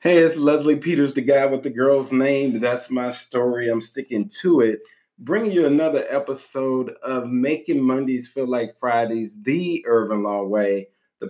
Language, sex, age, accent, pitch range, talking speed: English, male, 30-49, American, 120-165 Hz, 170 wpm